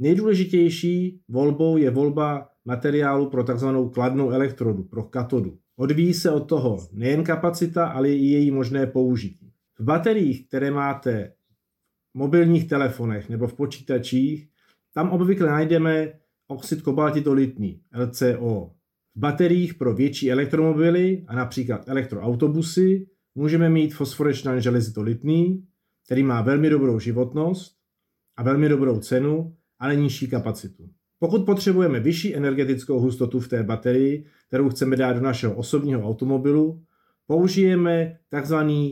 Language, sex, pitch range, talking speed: Slovak, male, 130-165 Hz, 120 wpm